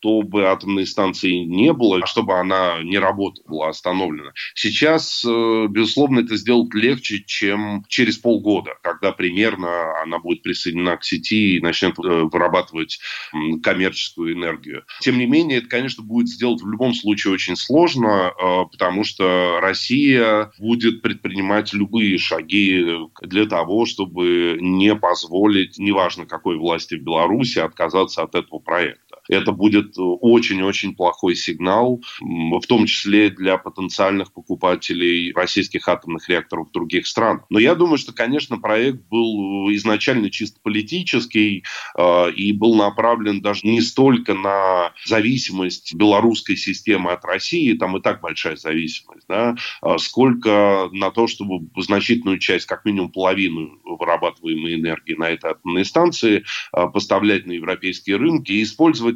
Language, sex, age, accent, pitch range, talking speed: Russian, male, 20-39, native, 90-115 Hz, 130 wpm